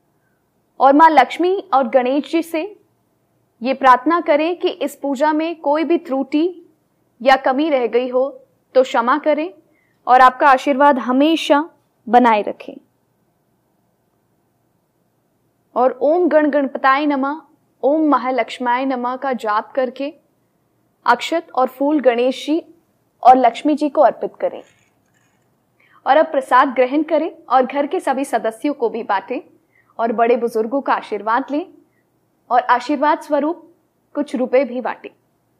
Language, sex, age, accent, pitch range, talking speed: Hindi, female, 20-39, native, 255-315 Hz, 135 wpm